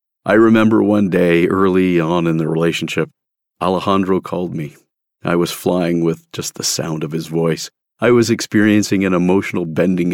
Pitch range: 85-95 Hz